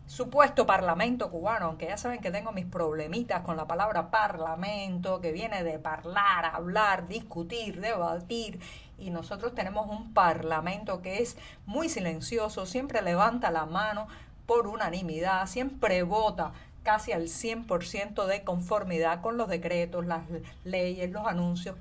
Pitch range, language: 170-235 Hz, Spanish